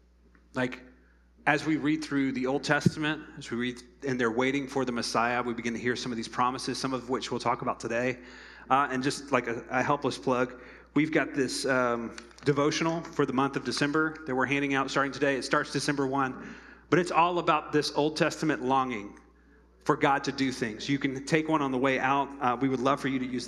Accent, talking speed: American, 225 wpm